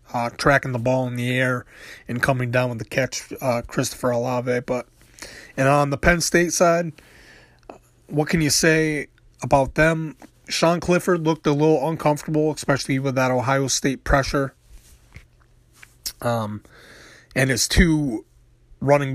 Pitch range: 125-145 Hz